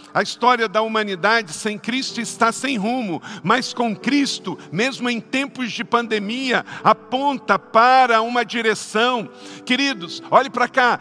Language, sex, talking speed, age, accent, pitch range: Portuguese, male, 135 wpm, 50-69, Brazilian, 205-260 Hz